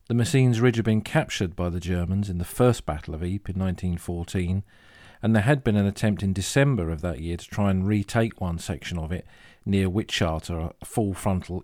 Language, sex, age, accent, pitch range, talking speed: English, male, 40-59, British, 90-110 Hz, 205 wpm